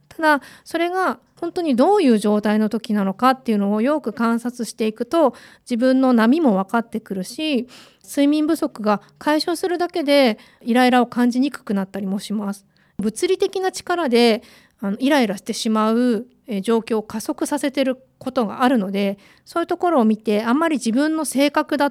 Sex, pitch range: female, 210-275 Hz